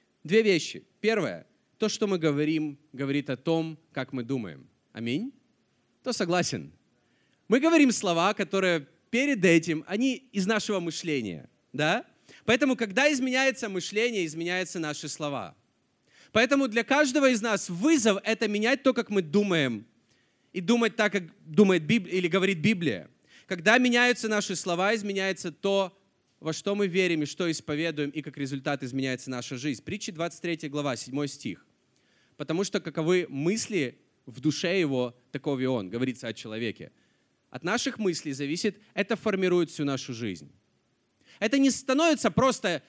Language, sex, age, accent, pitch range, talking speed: Russian, male, 30-49, native, 145-215 Hz, 150 wpm